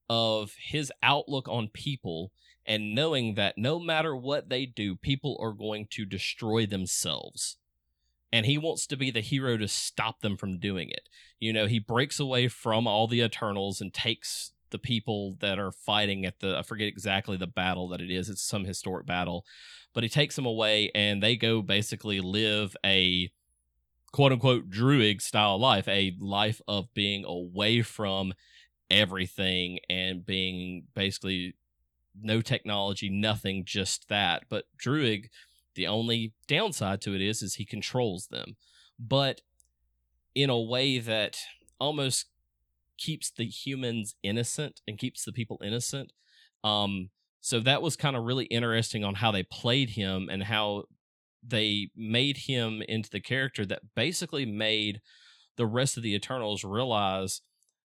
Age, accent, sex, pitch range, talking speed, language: 30-49, American, male, 95-120 Hz, 155 wpm, English